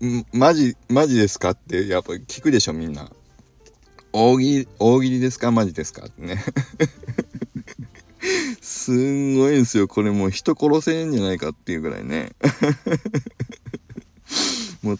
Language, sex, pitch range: Japanese, male, 90-125 Hz